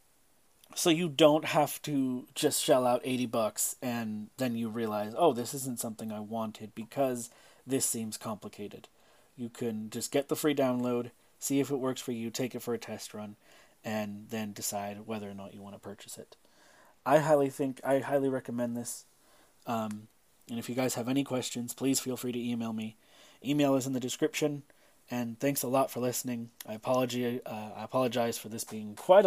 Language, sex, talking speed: English, male, 190 wpm